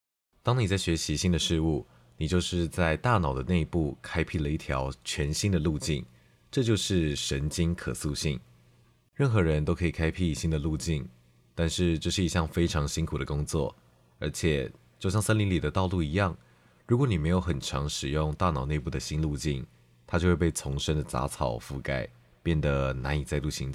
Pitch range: 70-90 Hz